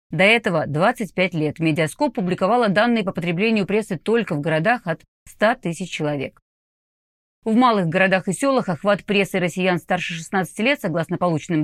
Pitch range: 170-225 Hz